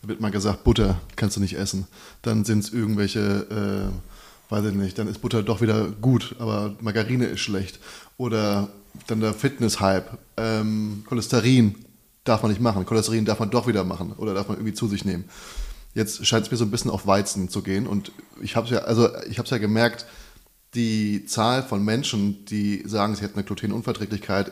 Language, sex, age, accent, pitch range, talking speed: German, male, 20-39, German, 100-120 Hz, 180 wpm